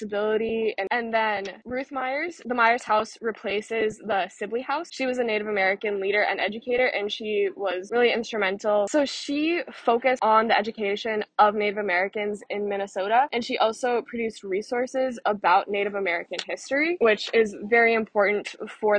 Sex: female